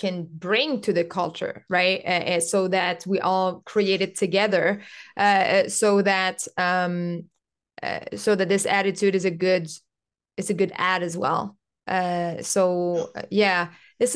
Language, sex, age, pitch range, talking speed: English, female, 20-39, 185-220 Hz, 155 wpm